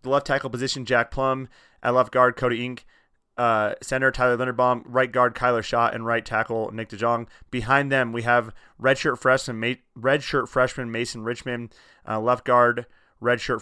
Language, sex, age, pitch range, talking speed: English, male, 30-49, 115-130 Hz, 180 wpm